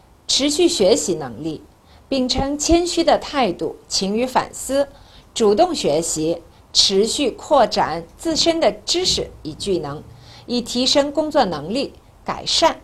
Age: 50-69